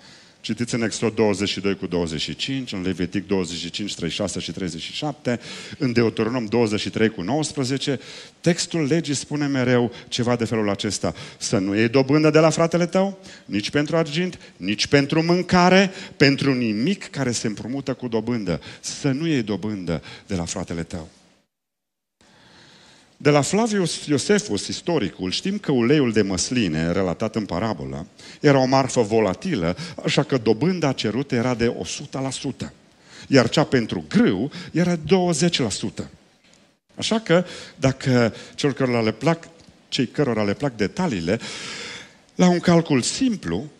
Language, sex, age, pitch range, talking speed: Romanian, male, 40-59, 105-160 Hz, 135 wpm